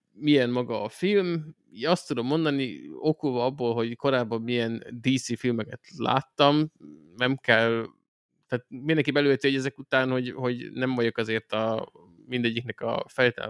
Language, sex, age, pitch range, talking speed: Hungarian, male, 20-39, 115-145 Hz, 140 wpm